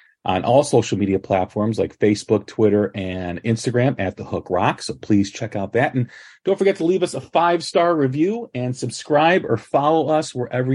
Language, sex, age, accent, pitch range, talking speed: English, male, 40-59, American, 105-145 Hz, 190 wpm